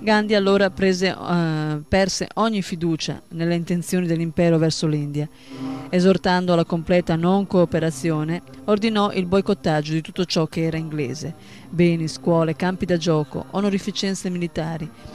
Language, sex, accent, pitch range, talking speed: Italian, female, native, 150-190 Hz, 130 wpm